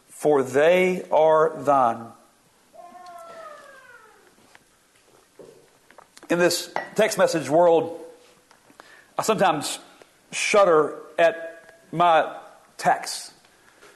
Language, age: English, 50-69